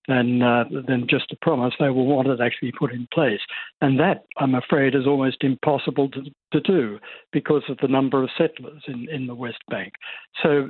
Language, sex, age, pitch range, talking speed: English, male, 60-79, 130-150 Hz, 200 wpm